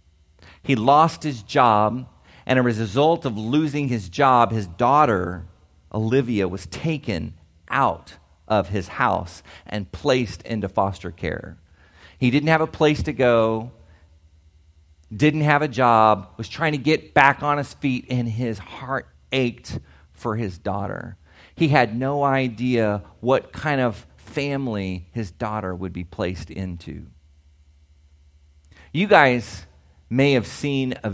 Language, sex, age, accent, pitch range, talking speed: English, male, 40-59, American, 80-120 Hz, 140 wpm